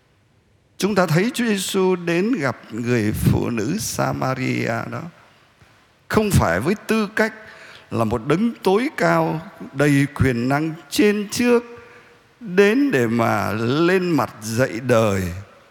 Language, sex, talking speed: Vietnamese, male, 130 wpm